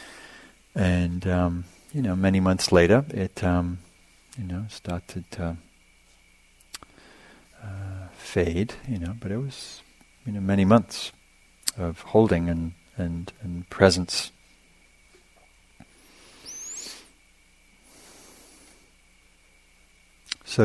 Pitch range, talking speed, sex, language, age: 85-105 Hz, 90 wpm, male, English, 40-59